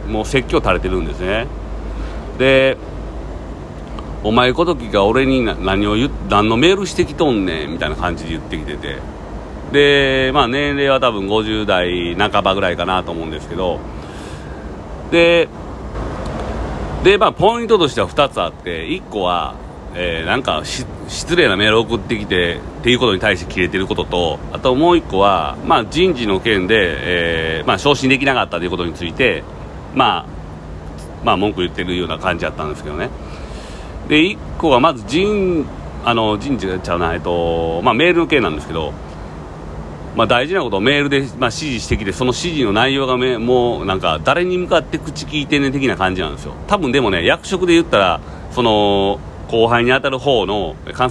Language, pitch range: Japanese, 85-130 Hz